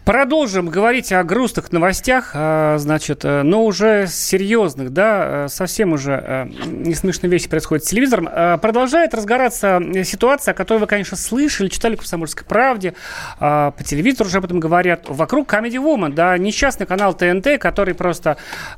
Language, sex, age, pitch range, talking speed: Russian, male, 30-49, 155-215 Hz, 155 wpm